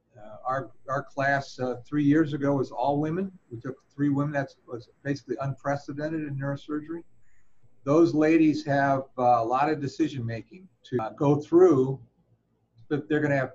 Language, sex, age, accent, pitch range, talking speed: English, male, 50-69, American, 120-150 Hz, 165 wpm